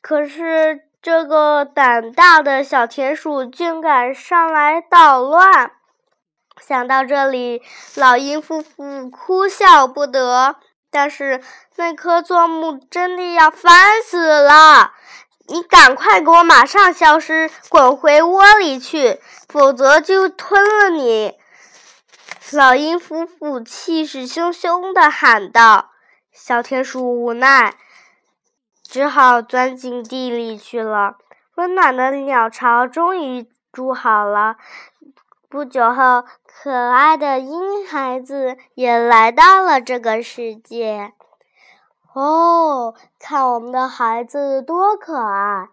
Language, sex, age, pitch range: Chinese, female, 10-29, 250-330 Hz